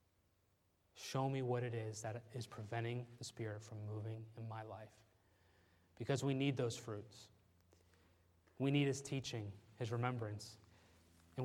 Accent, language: American, English